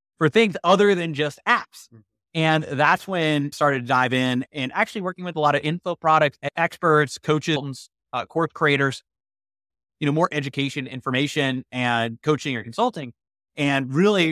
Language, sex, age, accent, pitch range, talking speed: English, male, 30-49, American, 125-165 Hz, 165 wpm